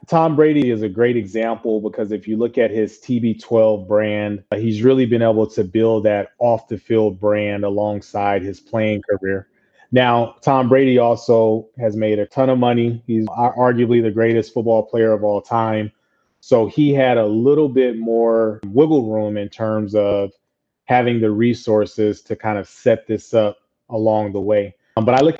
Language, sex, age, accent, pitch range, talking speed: English, male, 30-49, American, 110-125 Hz, 180 wpm